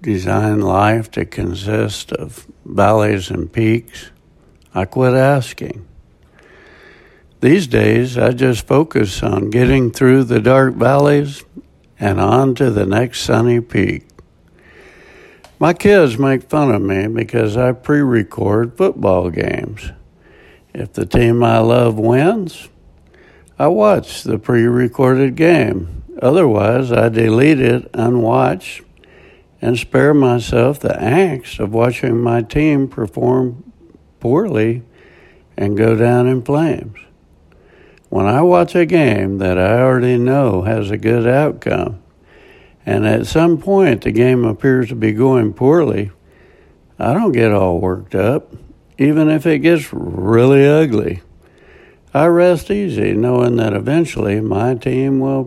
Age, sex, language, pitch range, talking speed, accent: 60-79, male, English, 105-135 Hz, 130 wpm, American